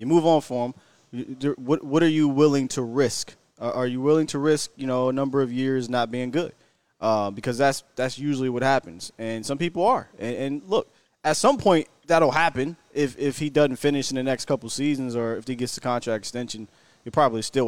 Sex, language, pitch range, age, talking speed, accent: male, English, 120-150 Hz, 20-39, 220 wpm, American